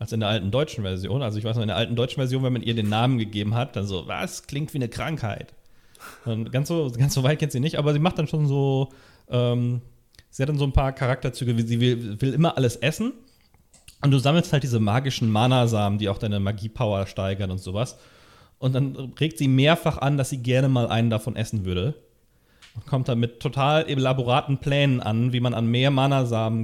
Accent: German